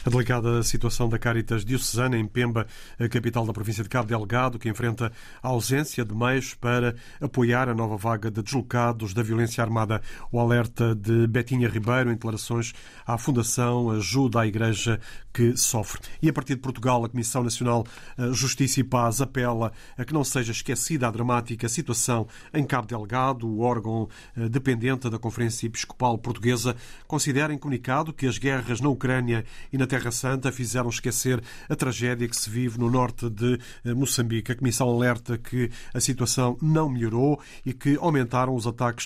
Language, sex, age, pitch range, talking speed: Portuguese, male, 40-59, 115-130 Hz, 170 wpm